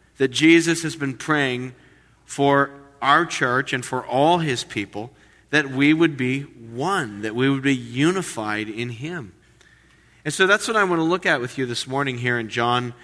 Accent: American